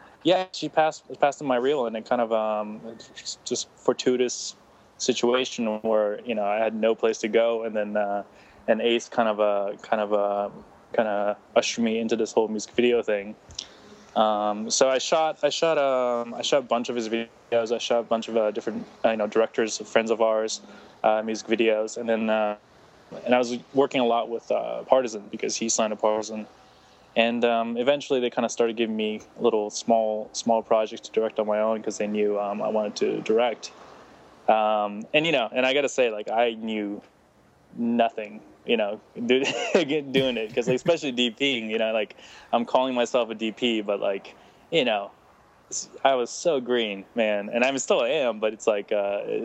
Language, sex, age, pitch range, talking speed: English, male, 20-39, 110-120 Hz, 200 wpm